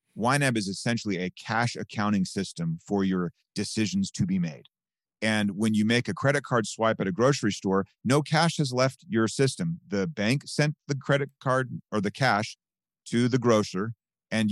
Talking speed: 180 wpm